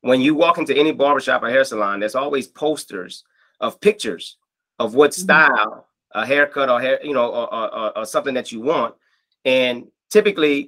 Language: English